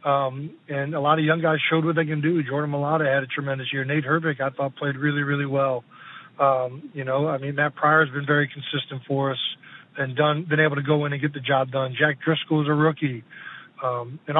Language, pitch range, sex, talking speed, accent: English, 140-155 Hz, male, 240 wpm, American